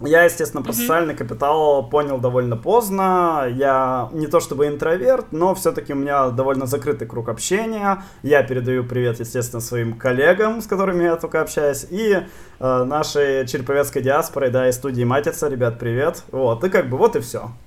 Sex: male